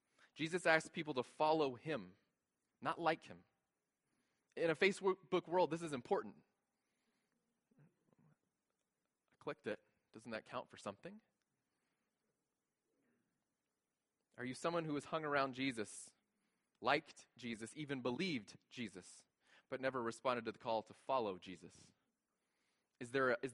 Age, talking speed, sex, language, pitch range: 20-39, 120 wpm, male, English, 120-160 Hz